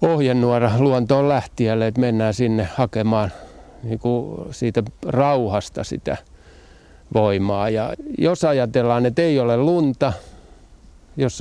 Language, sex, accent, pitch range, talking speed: Finnish, male, native, 110-130 Hz, 105 wpm